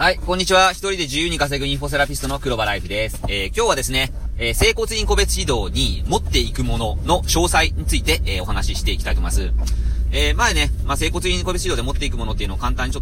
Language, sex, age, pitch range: Japanese, male, 30-49, 80-130 Hz